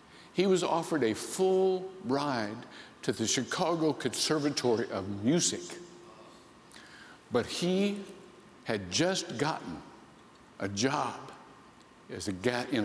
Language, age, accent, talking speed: English, 60-79, American, 95 wpm